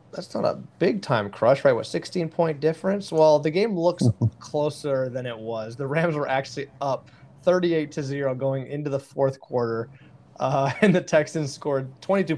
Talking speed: 170 wpm